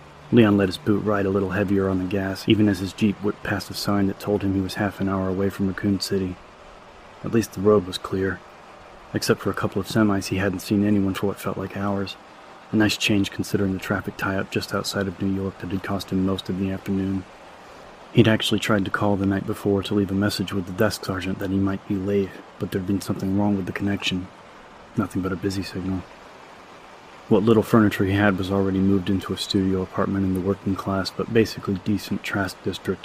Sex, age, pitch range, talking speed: male, 30-49, 95-100 Hz, 230 wpm